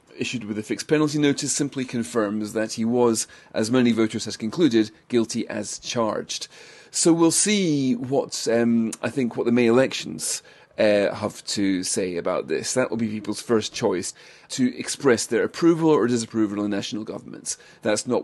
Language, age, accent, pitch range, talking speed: English, 30-49, British, 110-125 Hz, 175 wpm